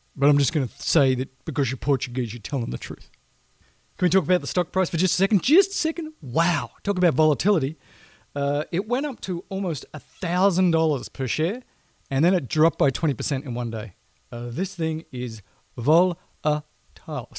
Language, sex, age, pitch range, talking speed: English, male, 40-59, 130-175 Hz, 195 wpm